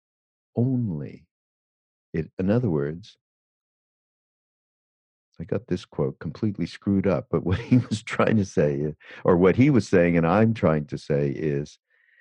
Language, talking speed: English, 145 wpm